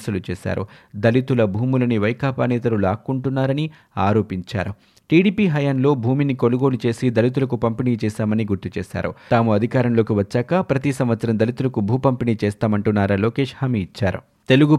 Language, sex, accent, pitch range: Telugu, male, native, 110-135 Hz